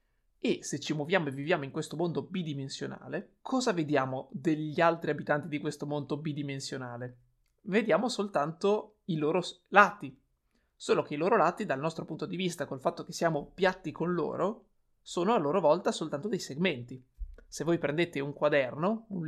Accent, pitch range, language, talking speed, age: native, 140-180 Hz, Italian, 170 wpm, 30-49